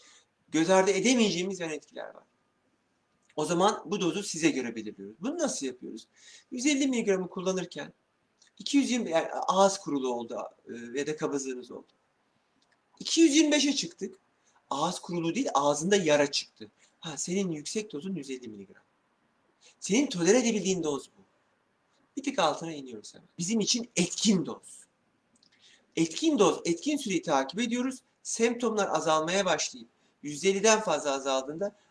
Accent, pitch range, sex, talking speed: native, 145-205 Hz, male, 125 wpm